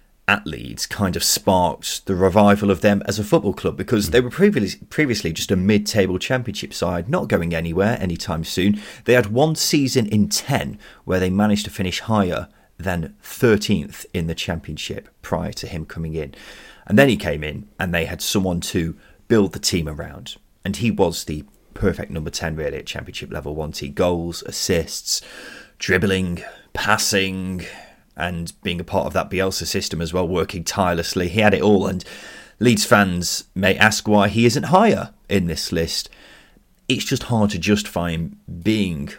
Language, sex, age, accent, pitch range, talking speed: English, male, 30-49, British, 85-105 Hz, 180 wpm